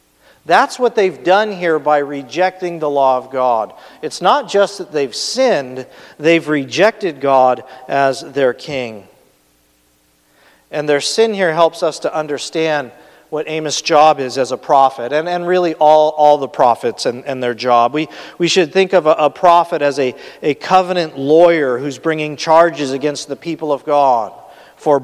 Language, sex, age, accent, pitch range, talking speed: English, male, 40-59, American, 130-165 Hz, 170 wpm